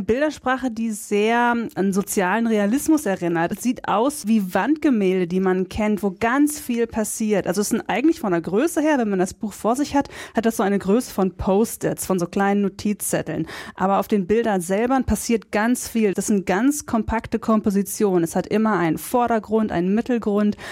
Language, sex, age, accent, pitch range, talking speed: German, female, 30-49, German, 200-245 Hz, 190 wpm